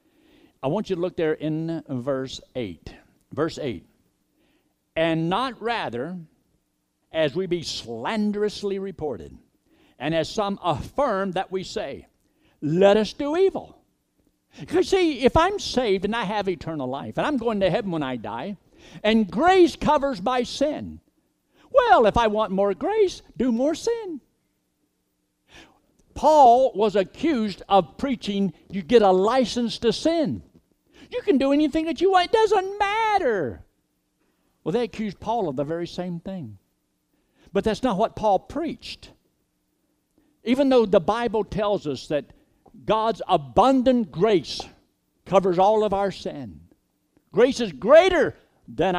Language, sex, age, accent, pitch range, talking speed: English, male, 60-79, American, 170-265 Hz, 145 wpm